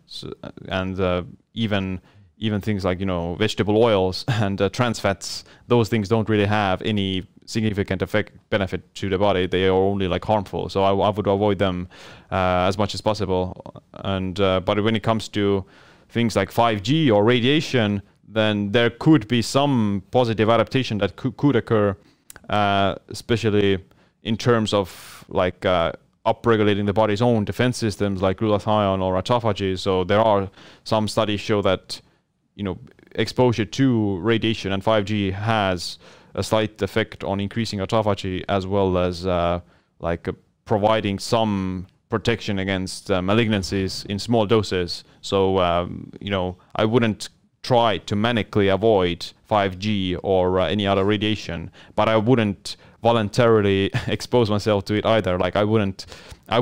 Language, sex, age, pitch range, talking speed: English, male, 30-49, 95-110 Hz, 160 wpm